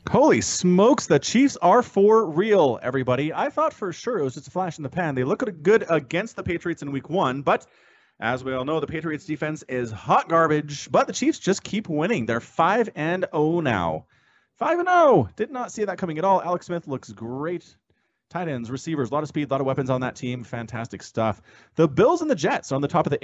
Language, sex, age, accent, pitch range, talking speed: English, male, 30-49, American, 110-170 Hz, 240 wpm